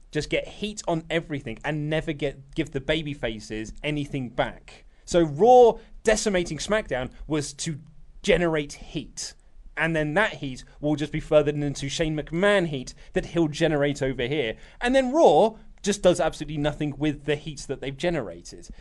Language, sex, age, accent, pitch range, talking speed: English, male, 30-49, British, 145-210 Hz, 165 wpm